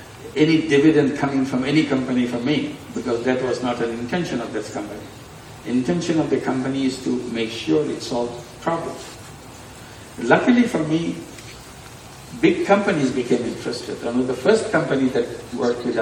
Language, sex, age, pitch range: Korean, male, 60-79, 120-150 Hz